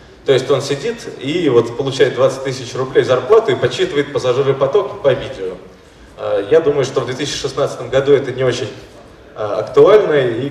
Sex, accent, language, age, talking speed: male, native, Russian, 20-39, 155 wpm